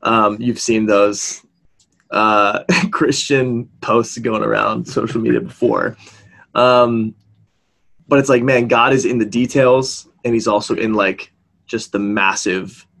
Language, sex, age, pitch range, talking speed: English, male, 20-39, 110-130 Hz, 140 wpm